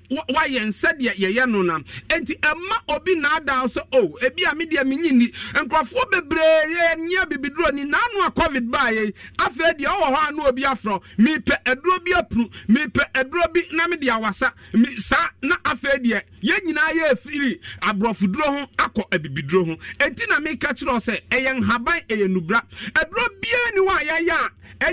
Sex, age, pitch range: male, 50-69, 230-325 Hz